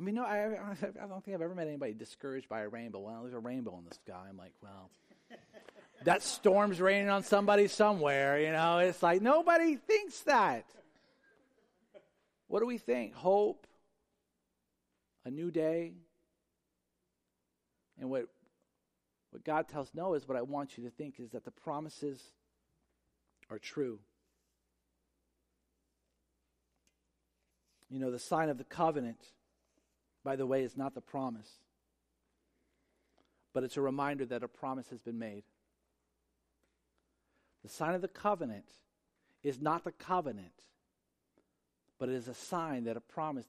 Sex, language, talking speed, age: male, English, 145 wpm, 40-59